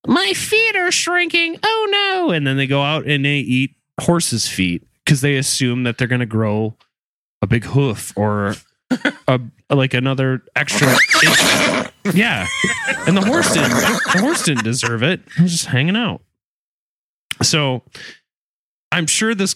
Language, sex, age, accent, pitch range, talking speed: English, male, 20-39, American, 125-170 Hz, 160 wpm